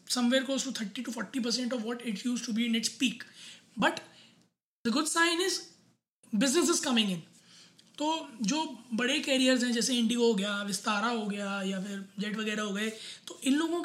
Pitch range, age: 210-260 Hz, 20-39